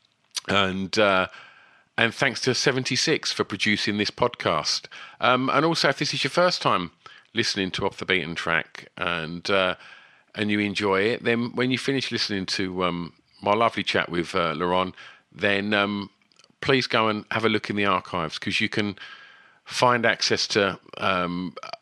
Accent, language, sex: British, English, male